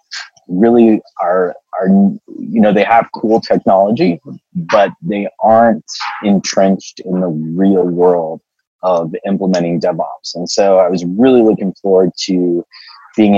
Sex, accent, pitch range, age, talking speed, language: male, American, 90-100 Hz, 20-39, 130 wpm, English